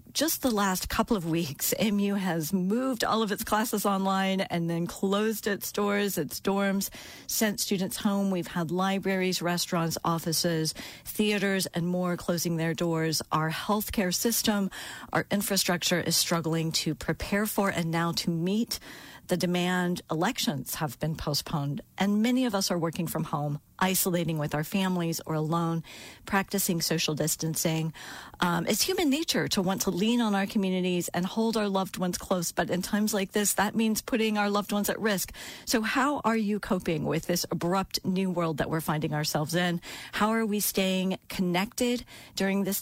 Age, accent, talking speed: 40-59, American, 175 wpm